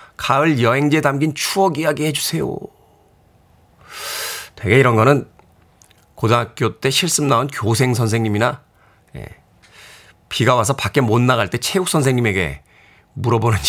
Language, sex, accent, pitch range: Korean, male, native, 115-155 Hz